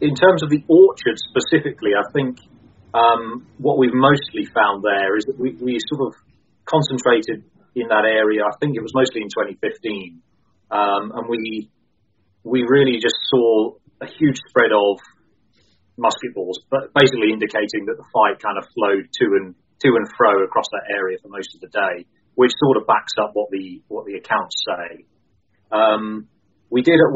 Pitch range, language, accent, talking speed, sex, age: 110-160 Hz, English, British, 180 wpm, male, 30-49